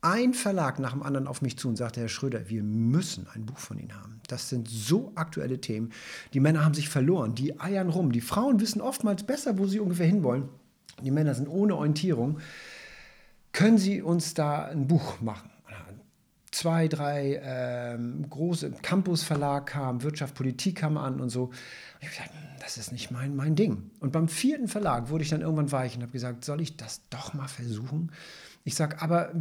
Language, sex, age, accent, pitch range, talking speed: German, male, 50-69, German, 130-180 Hz, 195 wpm